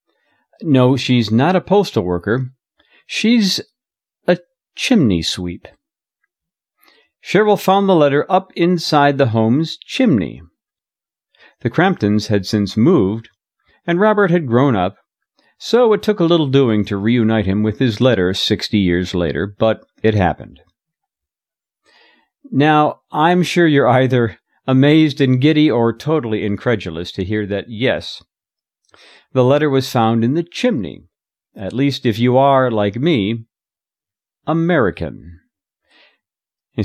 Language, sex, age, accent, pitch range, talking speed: English, male, 50-69, American, 110-170 Hz, 125 wpm